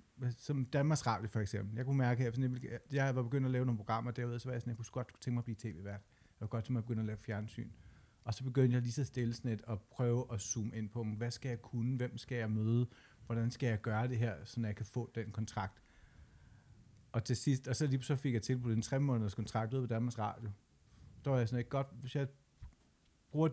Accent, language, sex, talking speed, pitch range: native, Danish, male, 250 wpm, 110-130 Hz